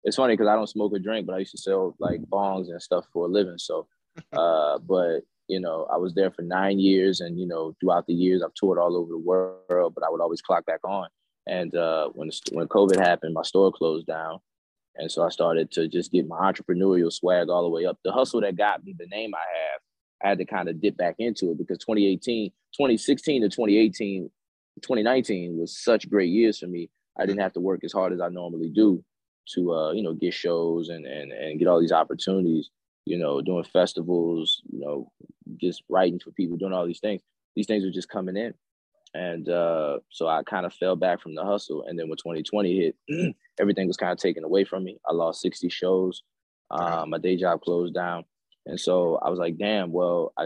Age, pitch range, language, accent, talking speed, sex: 20-39, 85-100 Hz, English, American, 225 wpm, male